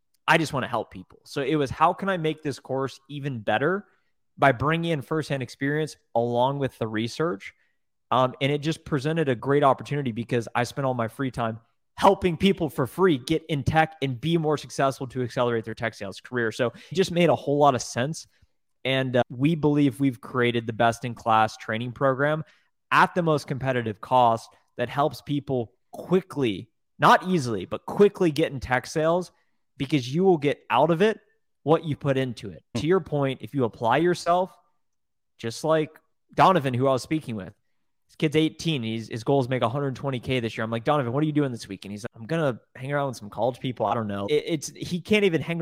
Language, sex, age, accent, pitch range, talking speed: English, male, 20-39, American, 120-155 Hz, 215 wpm